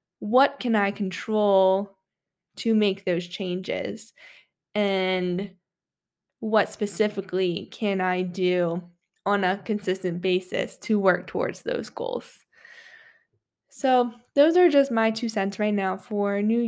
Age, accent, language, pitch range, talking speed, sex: 10-29, American, English, 195-240 Hz, 120 wpm, female